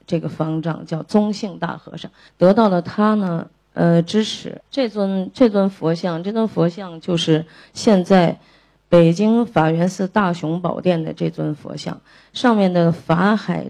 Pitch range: 160-195 Hz